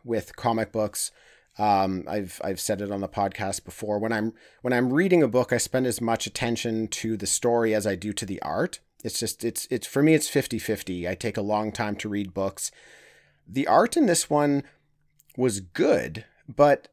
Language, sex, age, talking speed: English, male, 30-49, 205 wpm